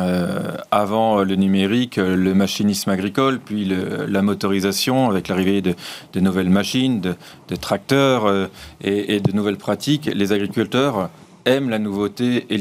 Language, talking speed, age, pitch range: French, 145 wpm, 40-59, 100-125 Hz